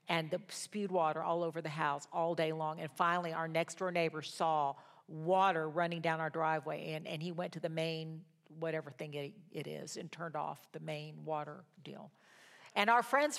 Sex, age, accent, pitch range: female, 50-69, American, 160-195 Hz